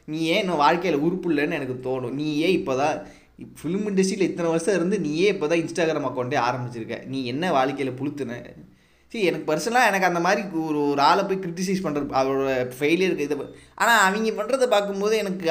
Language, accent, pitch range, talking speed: Tamil, native, 135-190 Hz, 175 wpm